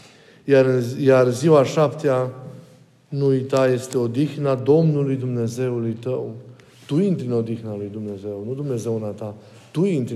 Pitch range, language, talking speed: 125-150 Hz, Romanian, 130 wpm